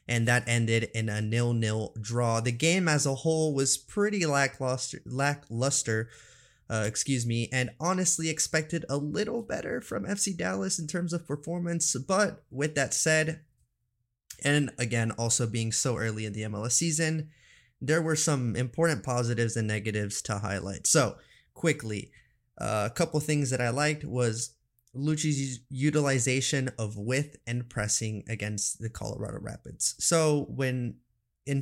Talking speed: 150 wpm